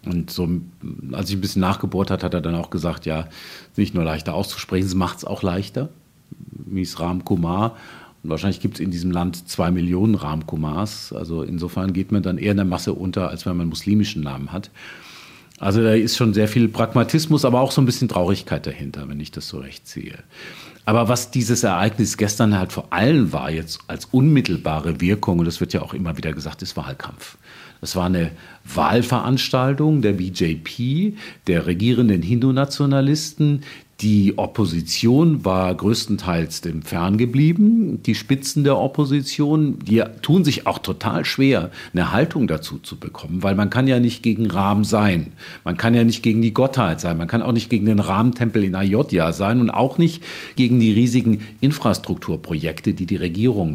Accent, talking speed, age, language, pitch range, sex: German, 180 wpm, 40-59, German, 90-120 Hz, male